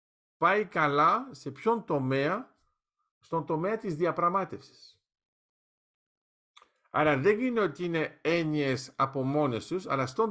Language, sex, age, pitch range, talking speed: Greek, male, 50-69, 135-185 Hz, 115 wpm